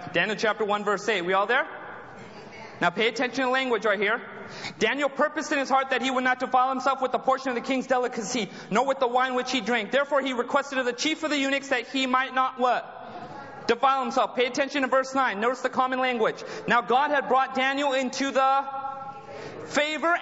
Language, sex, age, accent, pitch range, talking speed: English, male, 30-49, American, 250-290 Hz, 215 wpm